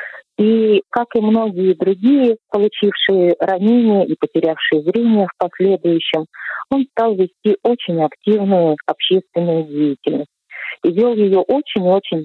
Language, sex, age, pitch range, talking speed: Russian, female, 40-59, 160-210 Hz, 120 wpm